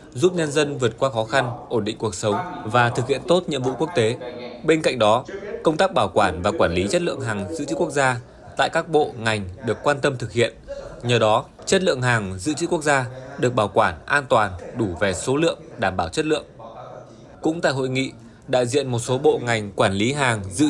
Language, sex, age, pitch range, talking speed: Vietnamese, male, 20-39, 115-150 Hz, 235 wpm